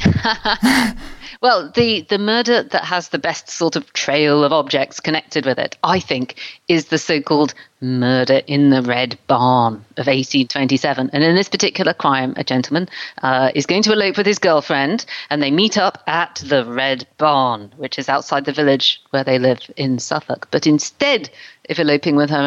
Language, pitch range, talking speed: English, 135-220 Hz, 180 wpm